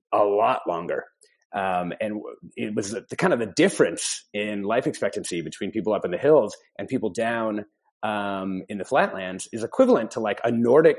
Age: 30-49